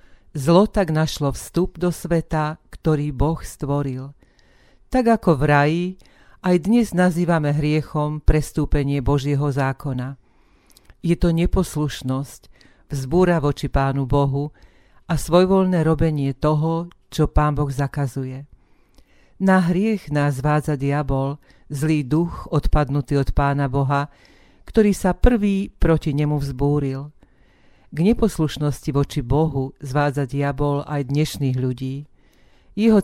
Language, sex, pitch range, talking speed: Slovak, female, 140-170 Hz, 115 wpm